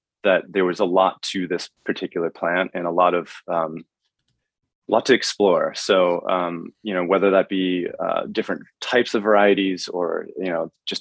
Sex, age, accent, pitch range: male, 20-39, American, 85-95 Hz